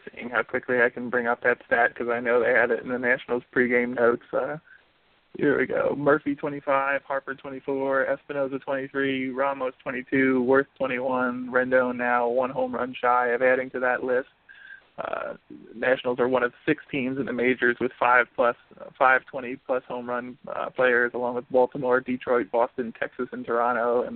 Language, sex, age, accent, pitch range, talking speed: English, male, 20-39, American, 125-135 Hz, 185 wpm